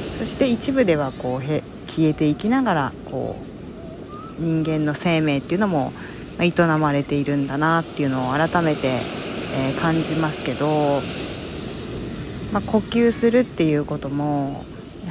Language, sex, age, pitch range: Japanese, female, 40-59, 145-180 Hz